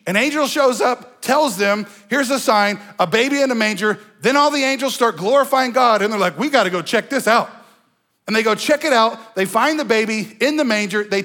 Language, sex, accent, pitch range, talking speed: English, male, American, 205-295 Hz, 235 wpm